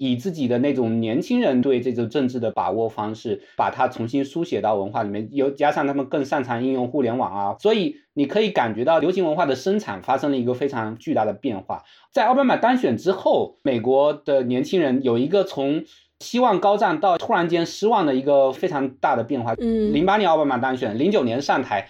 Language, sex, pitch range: Chinese, male, 130-195 Hz